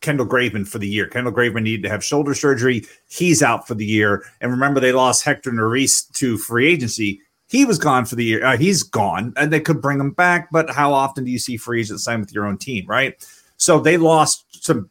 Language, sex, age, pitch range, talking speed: English, male, 30-49, 120-155 Hz, 240 wpm